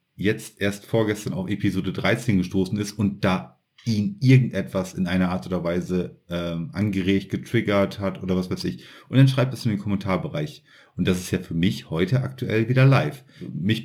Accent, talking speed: German, 190 wpm